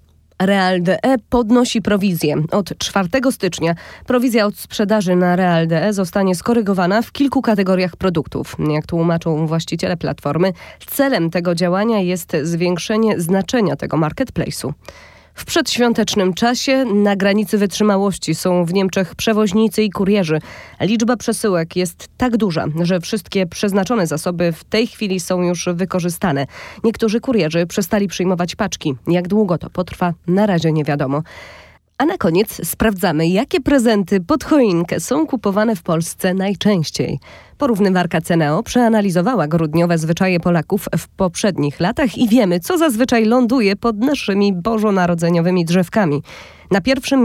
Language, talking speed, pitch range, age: Polish, 130 wpm, 175-220 Hz, 20-39